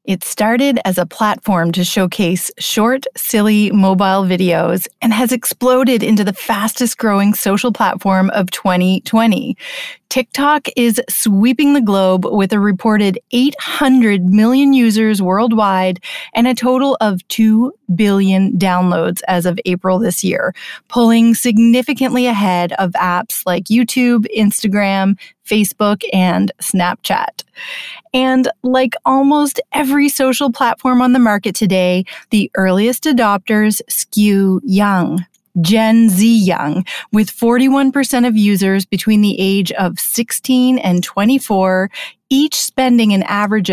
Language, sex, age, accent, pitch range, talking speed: English, female, 30-49, American, 190-255 Hz, 125 wpm